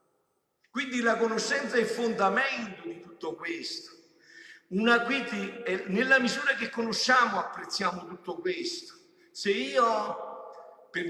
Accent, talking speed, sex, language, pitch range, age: native, 115 wpm, male, Italian, 185-255 Hz, 50-69